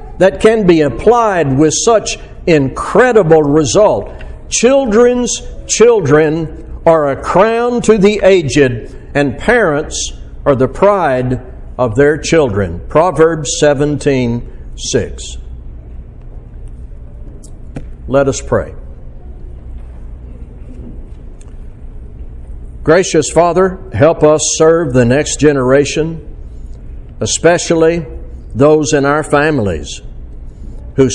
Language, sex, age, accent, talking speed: English, male, 60-79, American, 85 wpm